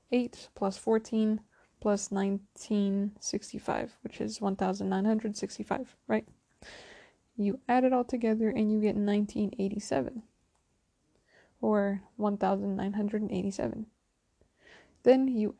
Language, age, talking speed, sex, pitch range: English, 20-39, 85 wpm, female, 200-225 Hz